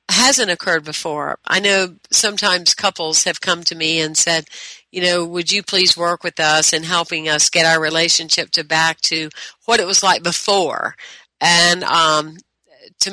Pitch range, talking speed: 165-205 Hz, 175 wpm